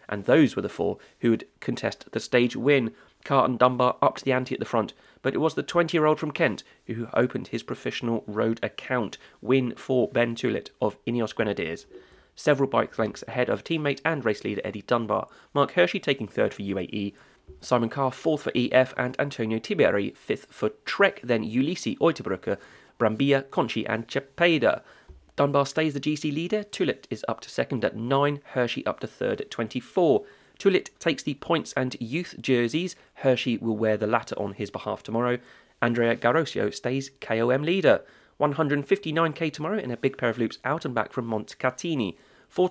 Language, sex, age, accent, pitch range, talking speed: English, male, 30-49, British, 115-150 Hz, 180 wpm